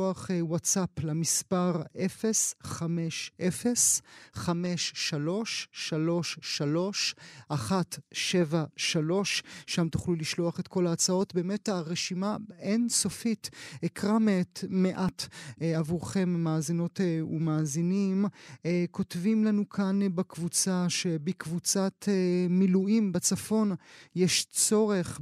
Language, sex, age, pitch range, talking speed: Hebrew, male, 30-49, 165-195 Hz, 65 wpm